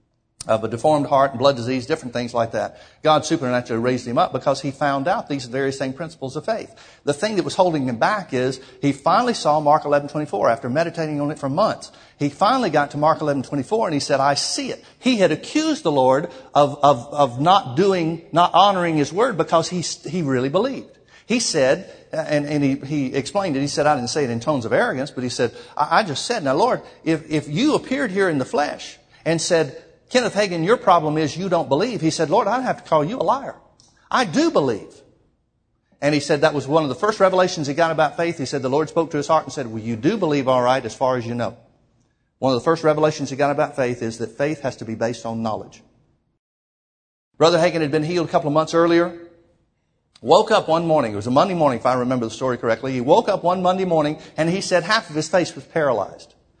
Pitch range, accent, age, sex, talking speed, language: 130-170 Hz, American, 60-79, male, 245 wpm, English